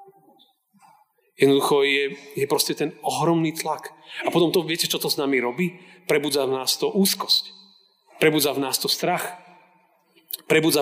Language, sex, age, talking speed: Slovak, male, 40-59, 150 wpm